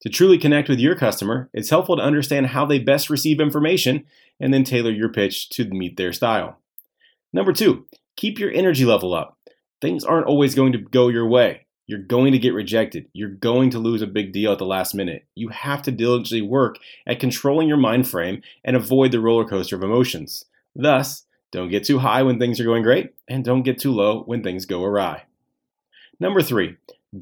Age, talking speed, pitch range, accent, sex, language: 30-49, 205 wpm, 105-140 Hz, American, male, English